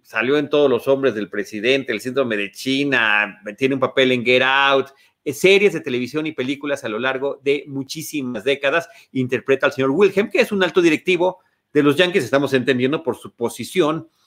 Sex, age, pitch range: male, 40-59, 120-150 Hz